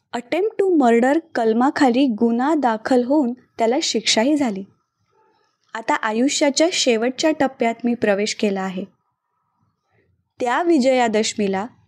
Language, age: Marathi, 20-39